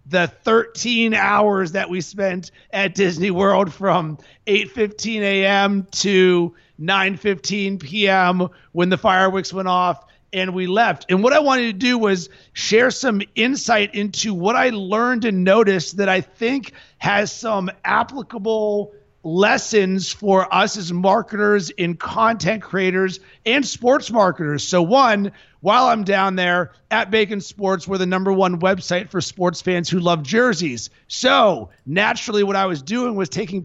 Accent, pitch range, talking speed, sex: American, 180-210 Hz, 155 wpm, male